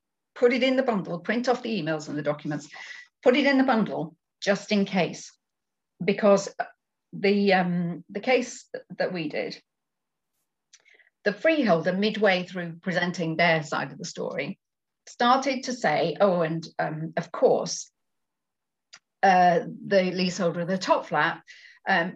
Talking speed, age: 145 wpm, 40-59